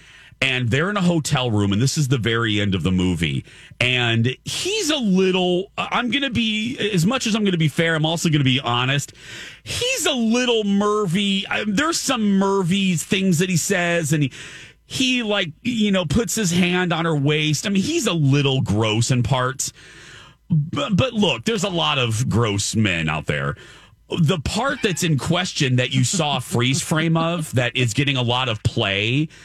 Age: 40-59